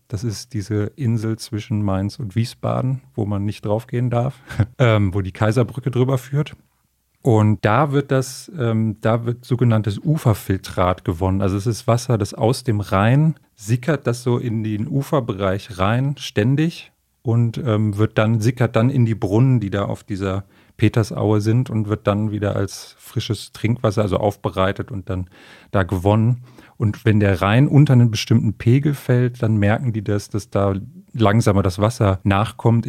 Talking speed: 170 wpm